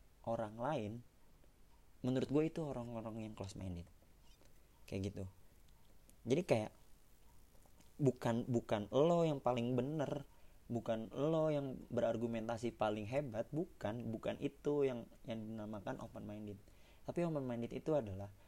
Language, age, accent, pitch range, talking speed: Indonesian, 30-49, native, 100-130 Hz, 125 wpm